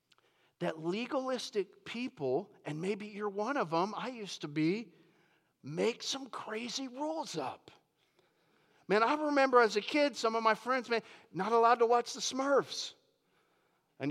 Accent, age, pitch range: American, 40-59, 180-245 Hz